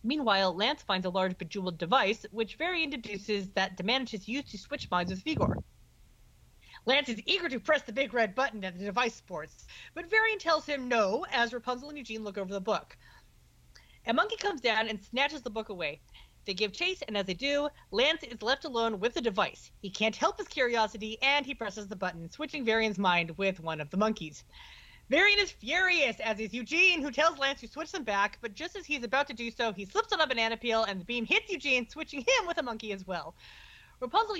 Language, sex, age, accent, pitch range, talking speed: English, female, 40-59, American, 205-290 Hz, 220 wpm